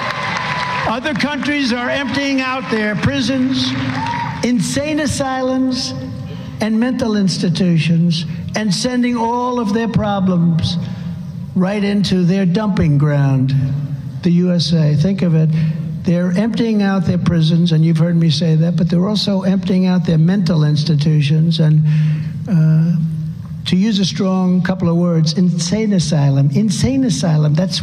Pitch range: 165-215 Hz